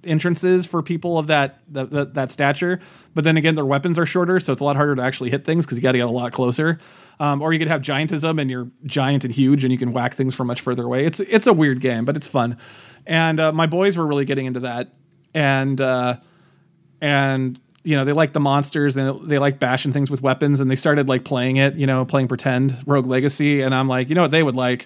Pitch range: 135-165 Hz